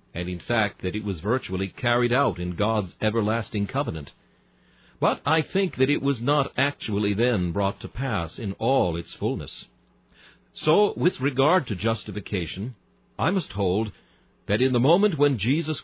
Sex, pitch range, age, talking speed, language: male, 95-140 Hz, 60-79, 165 wpm, Spanish